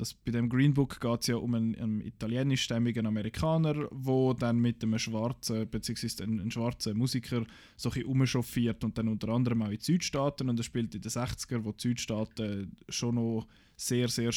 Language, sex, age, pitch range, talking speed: German, male, 20-39, 115-135 Hz, 190 wpm